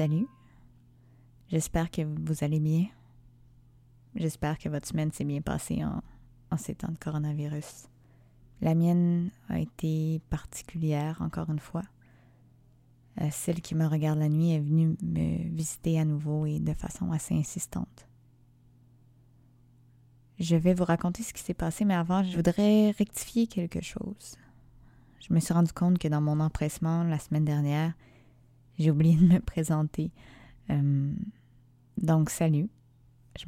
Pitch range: 125-165 Hz